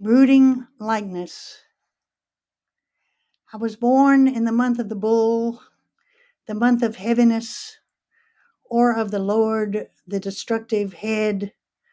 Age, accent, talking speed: 60-79, American, 110 wpm